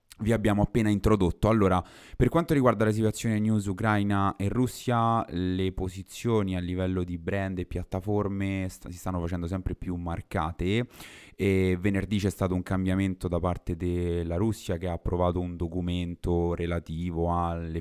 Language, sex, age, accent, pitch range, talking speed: Italian, male, 20-39, native, 90-115 Hz, 150 wpm